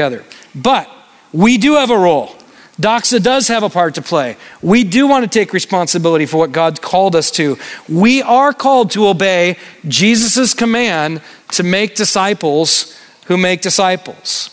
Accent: American